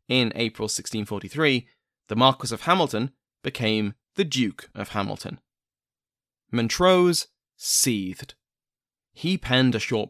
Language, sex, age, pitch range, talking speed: English, male, 20-39, 110-145 Hz, 105 wpm